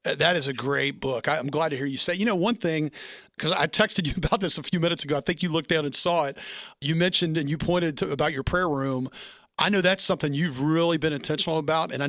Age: 40-59